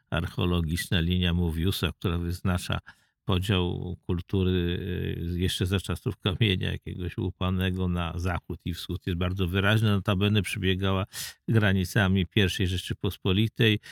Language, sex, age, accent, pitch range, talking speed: Polish, male, 50-69, native, 95-135 Hz, 110 wpm